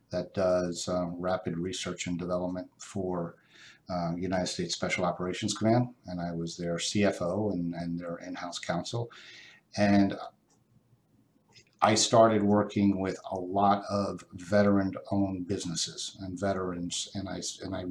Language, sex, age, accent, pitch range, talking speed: English, male, 50-69, American, 90-105 Hz, 135 wpm